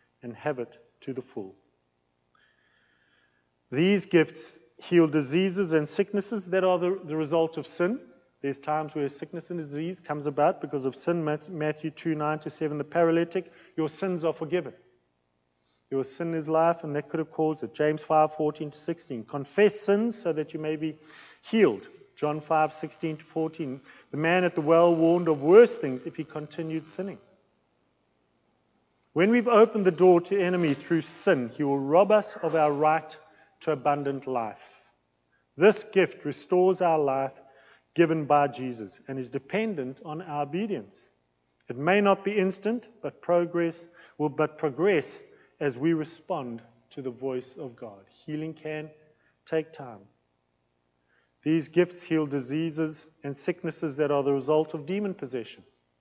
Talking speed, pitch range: 160 wpm, 140-170 Hz